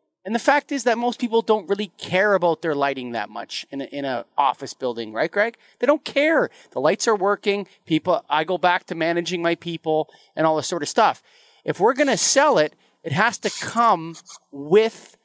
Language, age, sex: English, 30-49, male